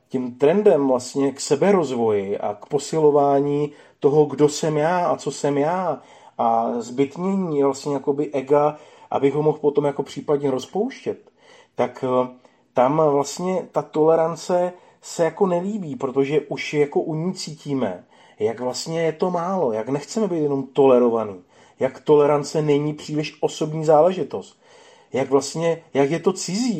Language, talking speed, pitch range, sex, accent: Czech, 145 wpm, 135-180 Hz, male, native